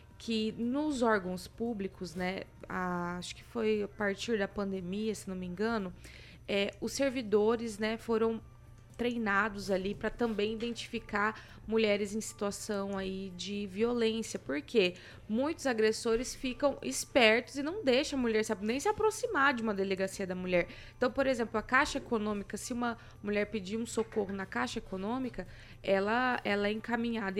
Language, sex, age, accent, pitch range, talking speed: Portuguese, female, 20-39, Brazilian, 195-235 Hz, 155 wpm